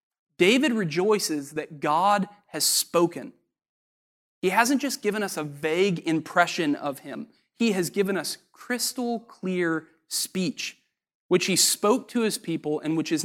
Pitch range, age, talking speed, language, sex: 170-220 Hz, 20-39, 145 wpm, English, male